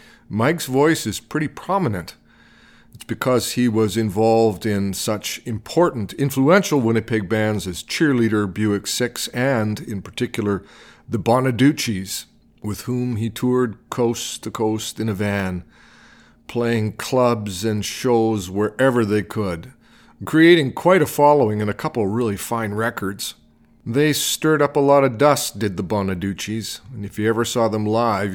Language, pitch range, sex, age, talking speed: English, 105-125 Hz, male, 40-59, 150 wpm